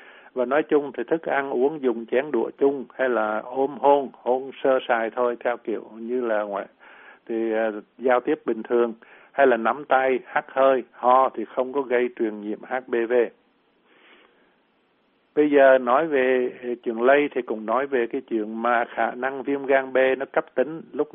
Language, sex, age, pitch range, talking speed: Vietnamese, male, 60-79, 115-140 Hz, 185 wpm